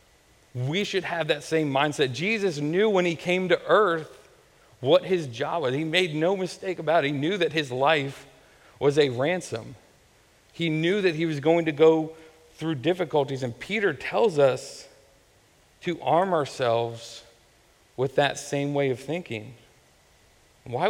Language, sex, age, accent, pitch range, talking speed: English, male, 40-59, American, 135-165 Hz, 160 wpm